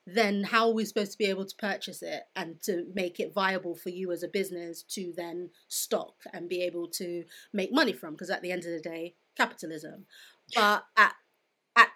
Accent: British